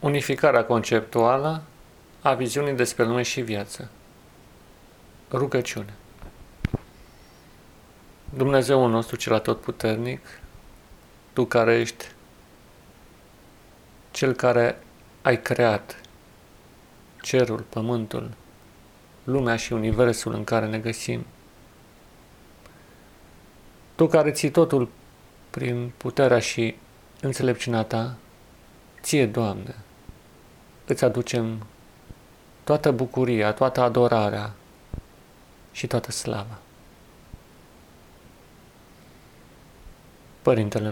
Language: Romanian